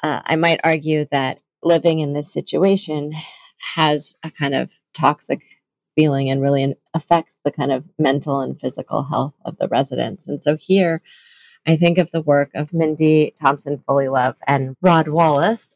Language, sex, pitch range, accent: English, female, 140-160 Hz, American